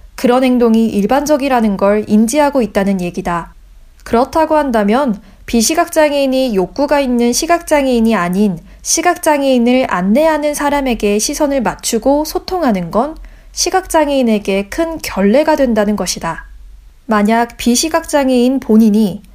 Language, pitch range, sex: Korean, 200-295 Hz, female